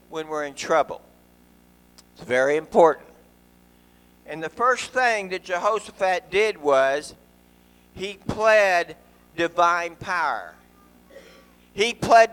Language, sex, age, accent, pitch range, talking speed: English, male, 50-69, American, 135-210 Hz, 100 wpm